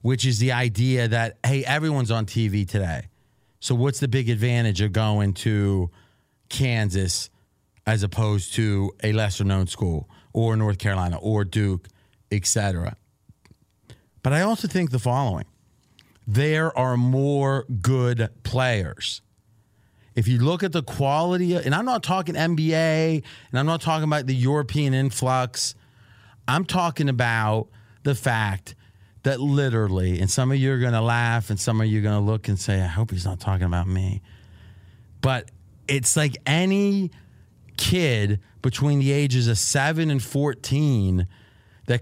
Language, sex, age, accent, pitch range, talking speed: English, male, 30-49, American, 105-135 Hz, 155 wpm